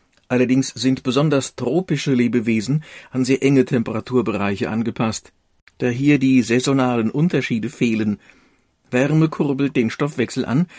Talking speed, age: 115 wpm, 50-69